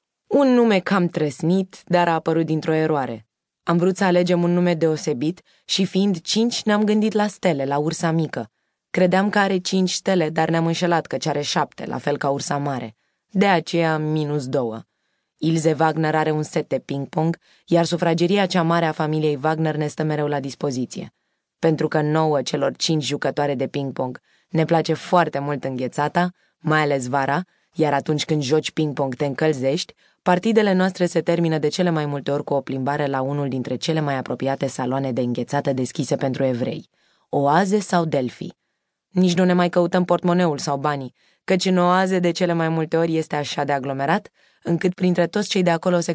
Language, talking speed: Romanian, 185 wpm